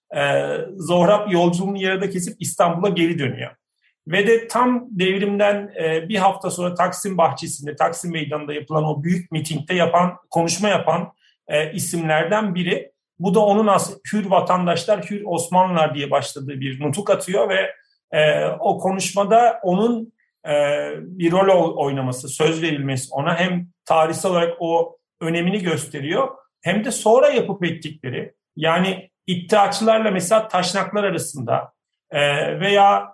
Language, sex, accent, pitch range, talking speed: Turkish, male, native, 160-200 Hz, 130 wpm